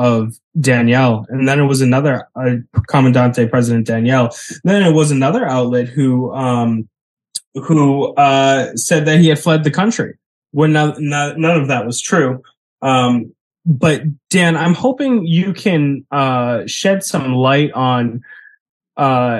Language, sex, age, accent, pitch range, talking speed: English, male, 10-29, American, 120-155 Hz, 140 wpm